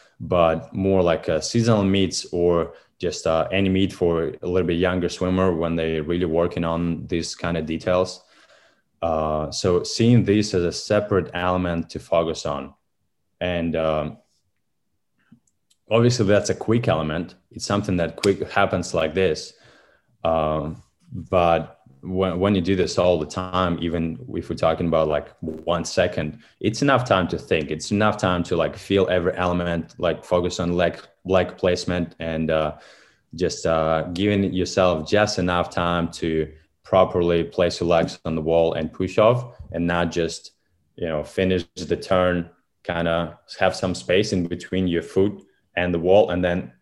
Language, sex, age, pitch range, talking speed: English, male, 20-39, 85-95 Hz, 165 wpm